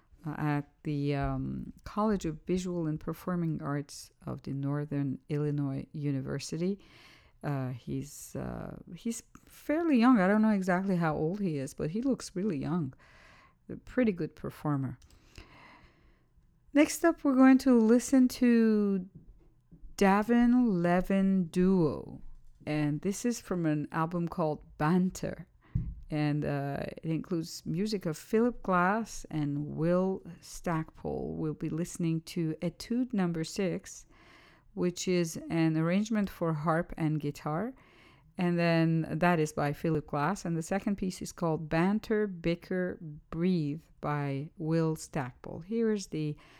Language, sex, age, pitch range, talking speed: English, female, 50-69, 150-195 Hz, 135 wpm